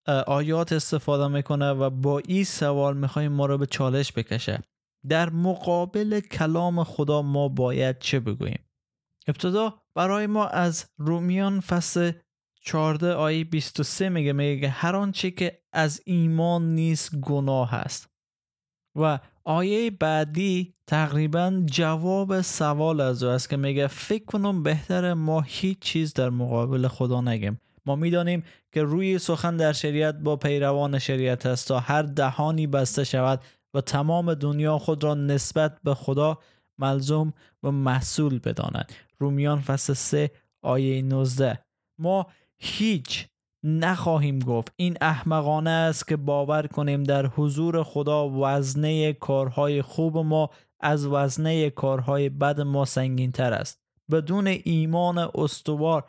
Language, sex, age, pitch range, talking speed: Persian, male, 20-39, 140-165 Hz, 125 wpm